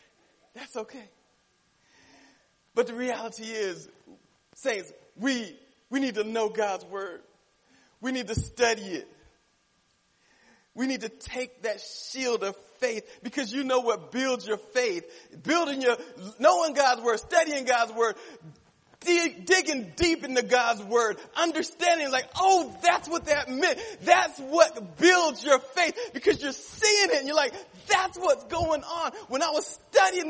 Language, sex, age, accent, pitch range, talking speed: English, male, 40-59, American, 240-345 Hz, 145 wpm